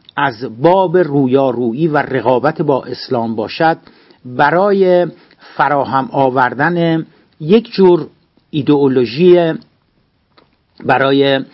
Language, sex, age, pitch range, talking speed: Persian, male, 60-79, 135-175 Hz, 80 wpm